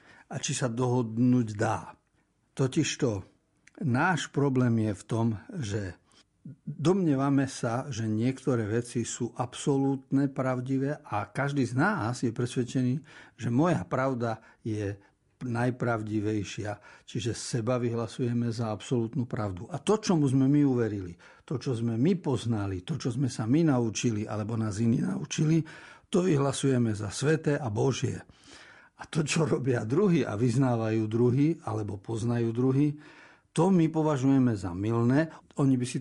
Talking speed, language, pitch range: 140 wpm, Slovak, 110-140 Hz